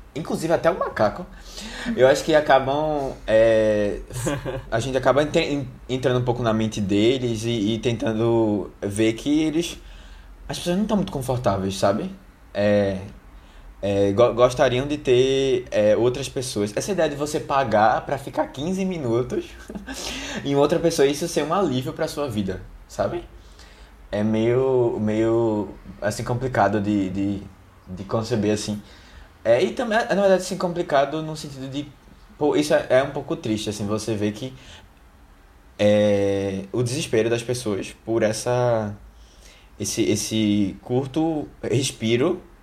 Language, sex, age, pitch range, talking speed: Portuguese, male, 20-39, 105-135 Hz, 145 wpm